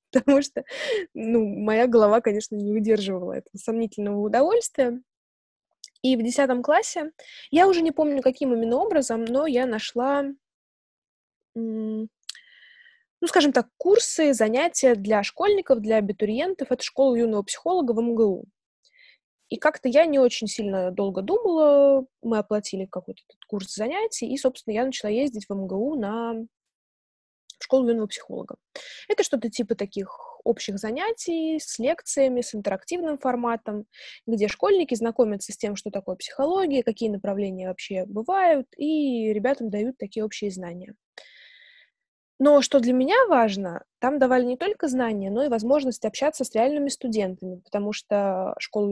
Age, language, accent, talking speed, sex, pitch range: 20-39, Russian, native, 140 wpm, female, 215-285 Hz